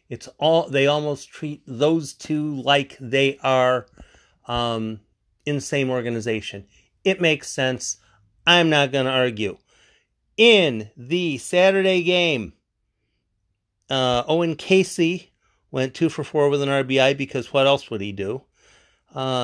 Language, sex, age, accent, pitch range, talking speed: English, male, 40-59, American, 110-155 Hz, 135 wpm